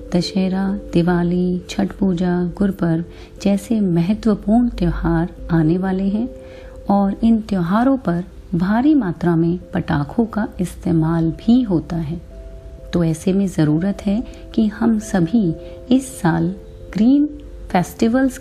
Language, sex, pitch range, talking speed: Hindi, female, 165-220 Hz, 115 wpm